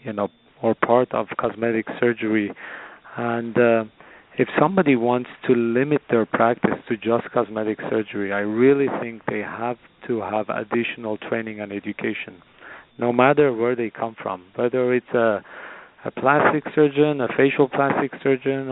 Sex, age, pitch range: male, 40-59, 110-135 Hz